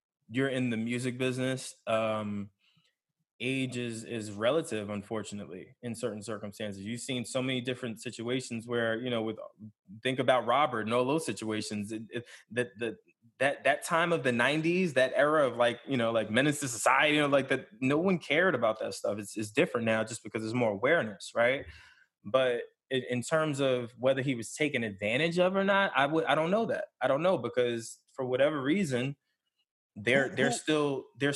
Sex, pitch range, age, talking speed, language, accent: male, 115-150 Hz, 20-39, 190 wpm, English, American